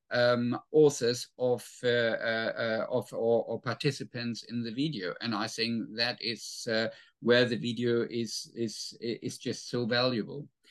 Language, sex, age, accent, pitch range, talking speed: English, male, 50-69, German, 125-165 Hz, 150 wpm